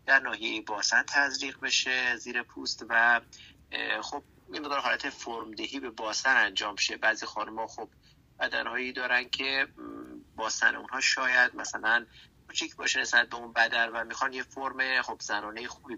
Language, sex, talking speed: Persian, male, 155 wpm